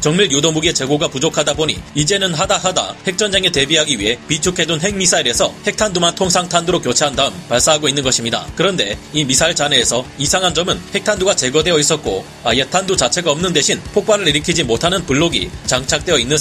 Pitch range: 145-185 Hz